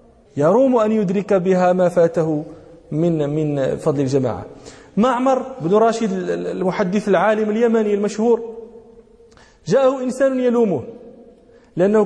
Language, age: English, 40-59